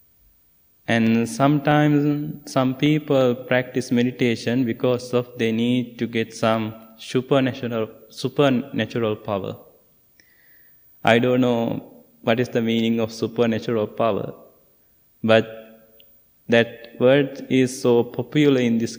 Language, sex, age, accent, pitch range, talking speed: English, male, 20-39, Indian, 115-130 Hz, 105 wpm